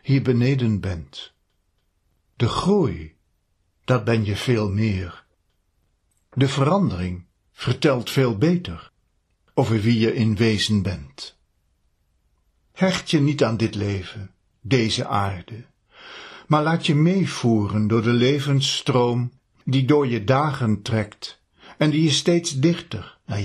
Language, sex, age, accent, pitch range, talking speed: Dutch, male, 60-79, Dutch, 90-140 Hz, 120 wpm